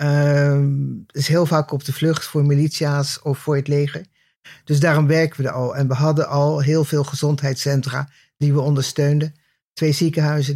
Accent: Dutch